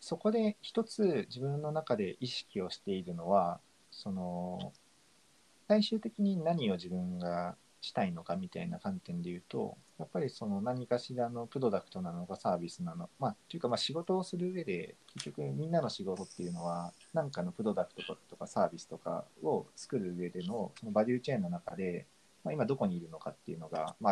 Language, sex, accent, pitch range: Japanese, male, native, 100-170 Hz